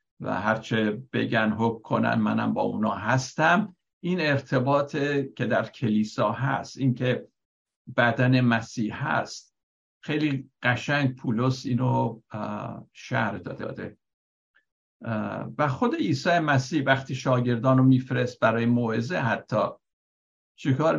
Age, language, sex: 60-79, Persian, male